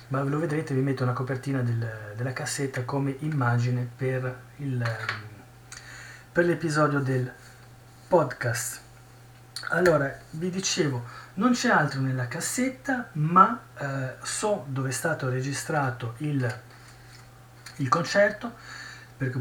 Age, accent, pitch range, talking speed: 30-49, native, 125-155 Hz, 110 wpm